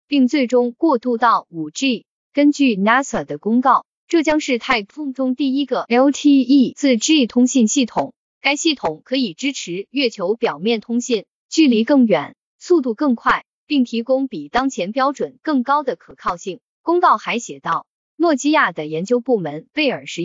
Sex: female